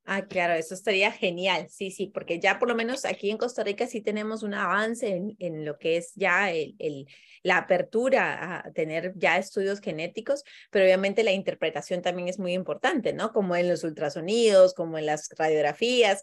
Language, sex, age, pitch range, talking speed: Spanish, female, 30-49, 175-215 Hz, 190 wpm